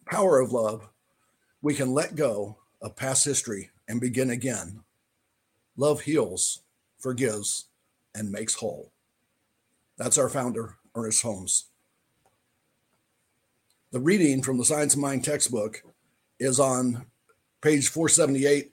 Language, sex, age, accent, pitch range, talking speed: English, male, 50-69, American, 120-140 Hz, 115 wpm